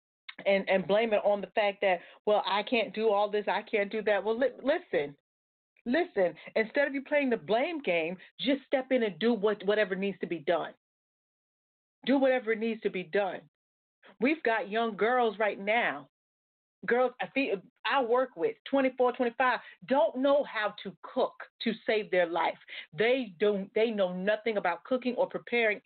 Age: 40-59